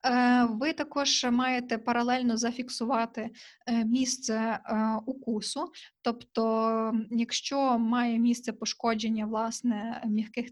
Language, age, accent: Ukrainian, 20-39, native